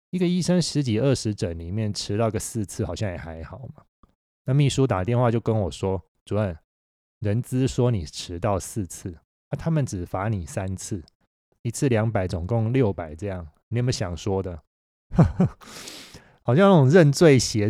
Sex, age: male, 20-39